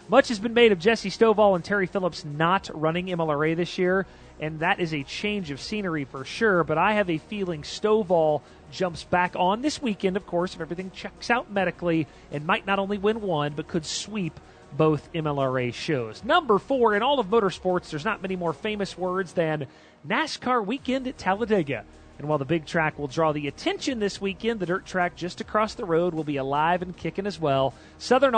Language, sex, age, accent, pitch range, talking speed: English, male, 40-59, American, 145-205 Hz, 205 wpm